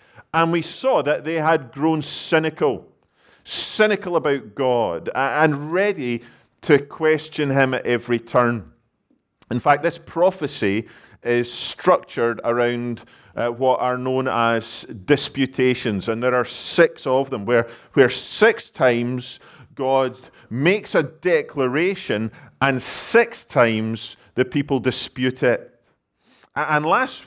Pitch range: 120-150 Hz